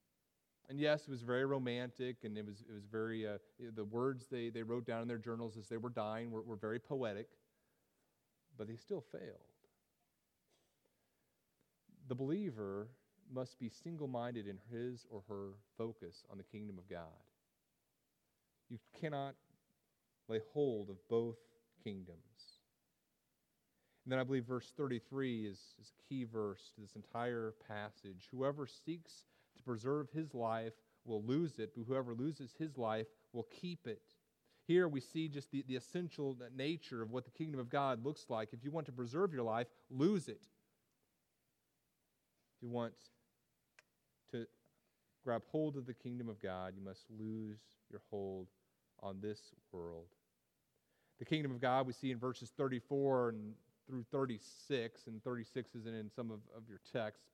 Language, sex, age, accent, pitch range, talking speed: English, male, 40-59, American, 110-135 Hz, 160 wpm